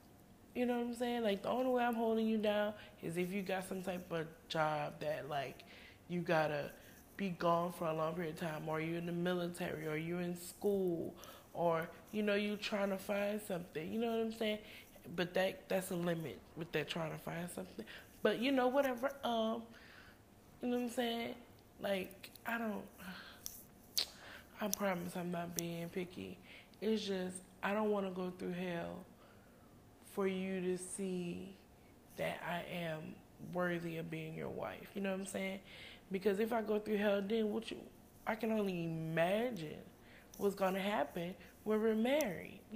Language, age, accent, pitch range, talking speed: English, 20-39, American, 170-215 Hz, 185 wpm